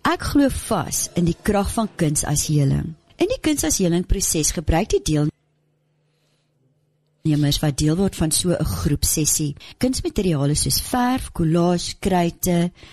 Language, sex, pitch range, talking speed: English, female, 150-190 Hz, 140 wpm